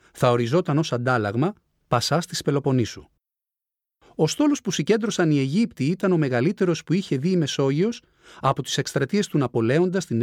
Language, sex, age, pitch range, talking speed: Greek, male, 40-59, 120-175 Hz, 160 wpm